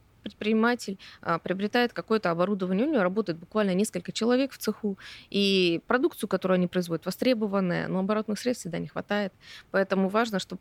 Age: 20-39